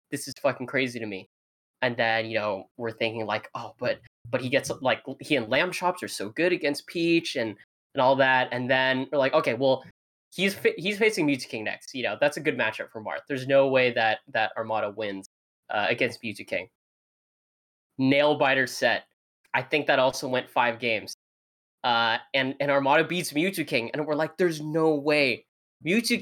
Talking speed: 200 wpm